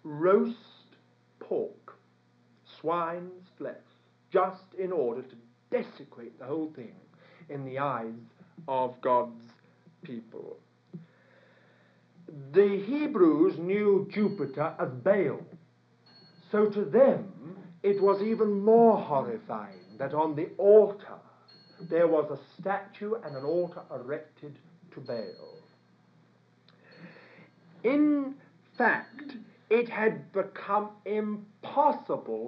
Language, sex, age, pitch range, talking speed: English, male, 50-69, 130-205 Hz, 95 wpm